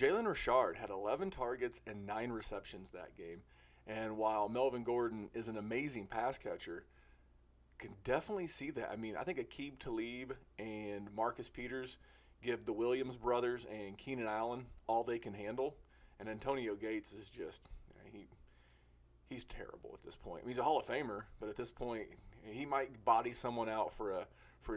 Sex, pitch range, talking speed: male, 105-125 Hz, 175 wpm